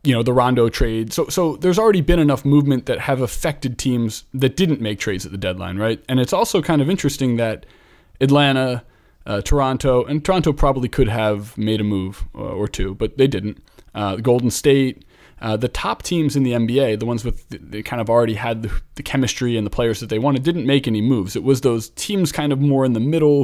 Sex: male